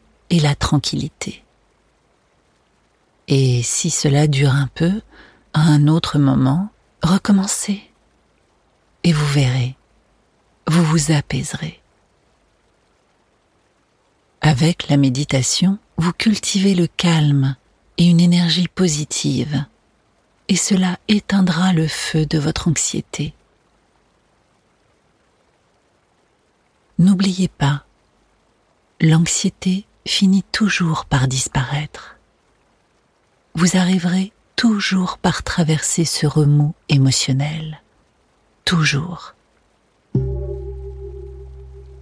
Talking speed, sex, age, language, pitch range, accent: 80 wpm, female, 40-59, French, 135-180 Hz, French